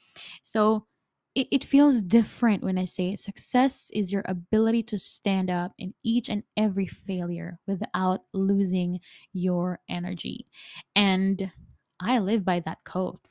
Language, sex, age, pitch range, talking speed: English, female, 10-29, 180-220 Hz, 135 wpm